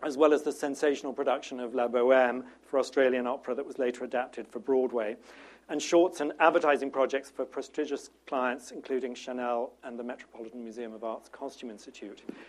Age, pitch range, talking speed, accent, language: 40-59, 125-150 Hz, 175 wpm, British, English